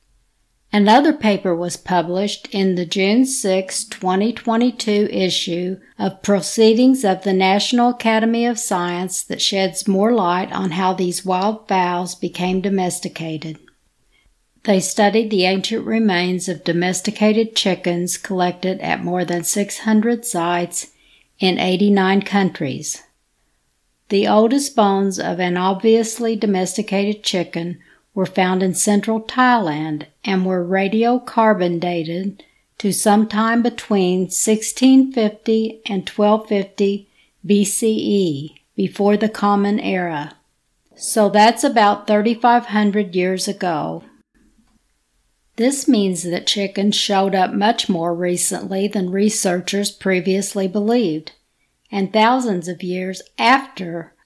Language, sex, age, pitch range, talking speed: English, female, 60-79, 180-215 Hz, 110 wpm